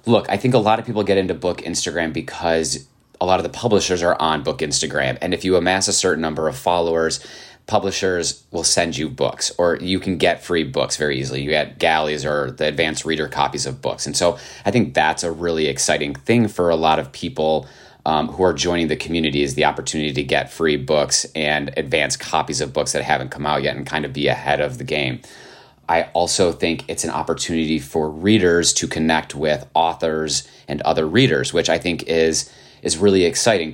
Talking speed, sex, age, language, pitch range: 215 wpm, male, 30-49, English, 75-85 Hz